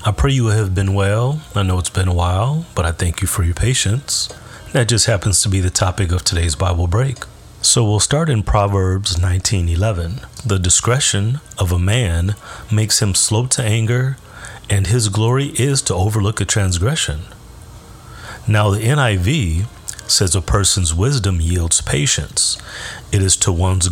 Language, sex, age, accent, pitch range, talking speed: English, male, 30-49, American, 90-115 Hz, 170 wpm